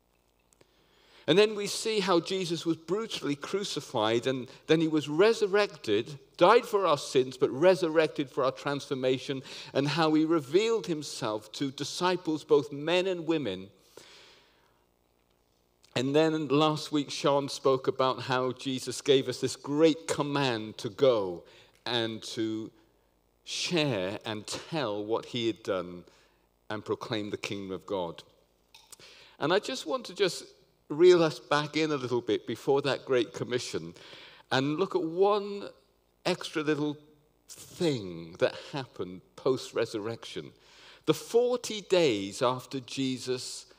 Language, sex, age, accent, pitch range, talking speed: English, male, 50-69, British, 110-170 Hz, 135 wpm